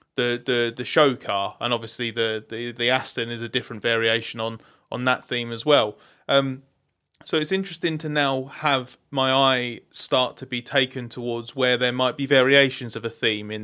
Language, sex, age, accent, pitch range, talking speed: English, male, 30-49, British, 115-130 Hz, 195 wpm